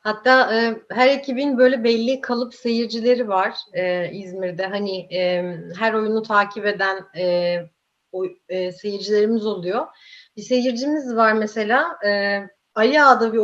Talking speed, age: 130 wpm, 30-49